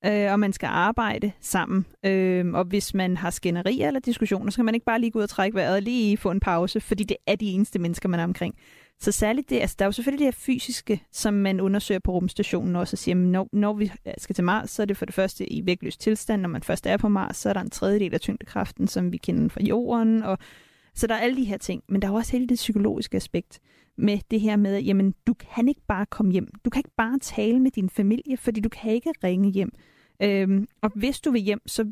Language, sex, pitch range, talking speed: Danish, female, 195-230 Hz, 265 wpm